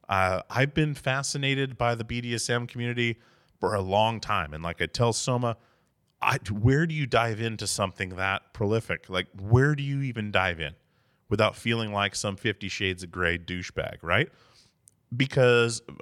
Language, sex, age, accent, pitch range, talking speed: English, male, 30-49, American, 95-125 Hz, 155 wpm